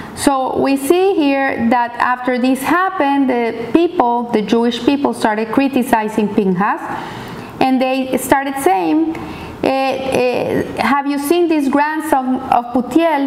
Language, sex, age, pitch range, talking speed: English, female, 30-49, 220-270 Hz, 130 wpm